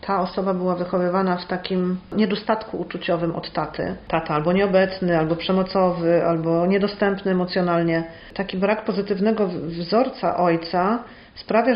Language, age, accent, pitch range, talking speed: Polish, 40-59, native, 185-220 Hz, 125 wpm